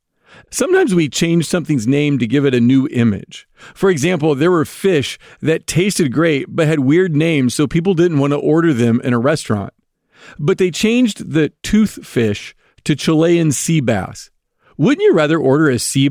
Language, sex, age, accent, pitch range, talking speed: English, male, 40-59, American, 130-175 Hz, 185 wpm